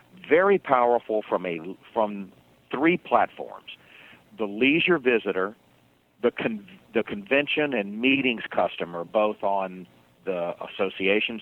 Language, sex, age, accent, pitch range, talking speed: English, male, 50-69, American, 95-125 Hz, 110 wpm